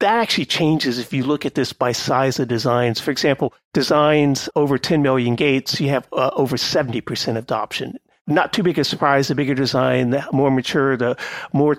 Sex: male